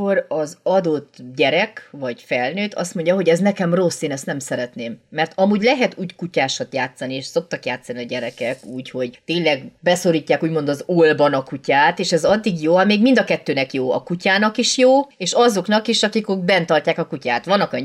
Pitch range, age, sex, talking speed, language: 145-185 Hz, 30-49, female, 195 wpm, Hungarian